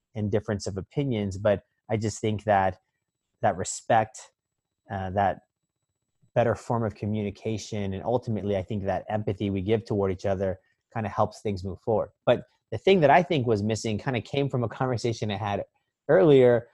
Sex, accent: male, American